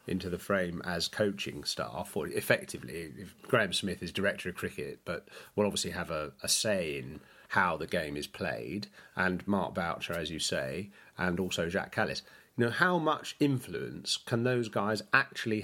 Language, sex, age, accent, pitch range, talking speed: English, male, 40-59, British, 95-125 Hz, 180 wpm